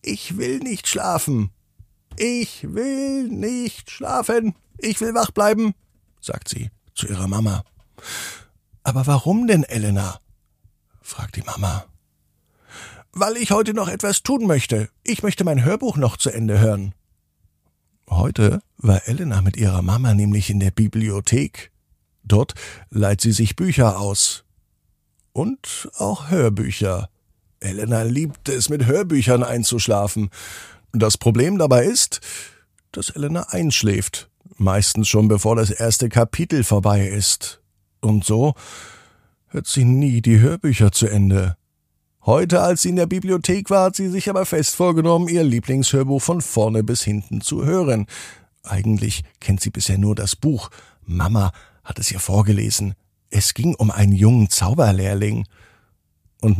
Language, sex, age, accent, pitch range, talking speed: German, male, 50-69, German, 100-145 Hz, 135 wpm